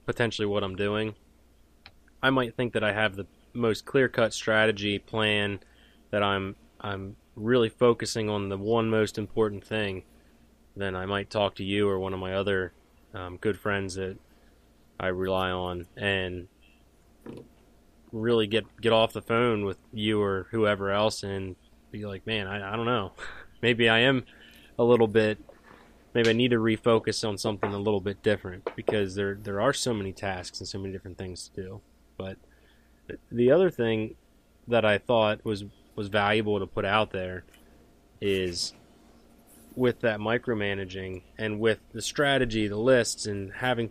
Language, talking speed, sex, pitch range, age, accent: English, 165 wpm, male, 95-110 Hz, 20-39, American